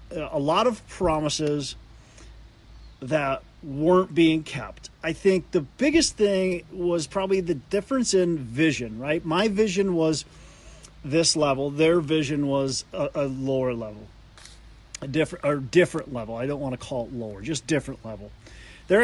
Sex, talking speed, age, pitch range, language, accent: male, 145 wpm, 40-59, 130-175 Hz, English, American